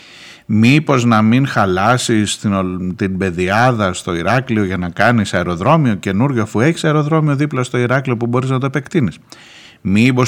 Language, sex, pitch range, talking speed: Greek, male, 105-130 Hz, 145 wpm